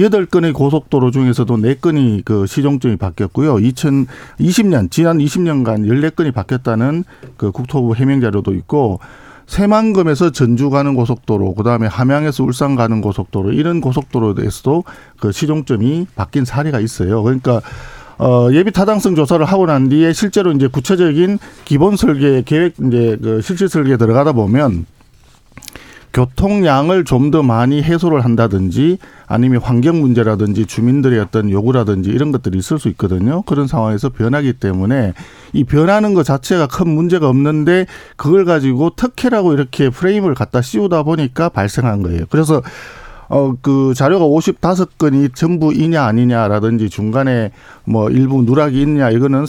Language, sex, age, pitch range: Korean, male, 50-69, 115-165 Hz